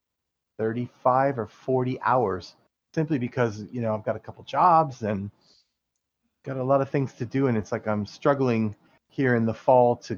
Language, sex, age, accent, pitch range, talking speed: English, male, 30-49, American, 115-145 Hz, 185 wpm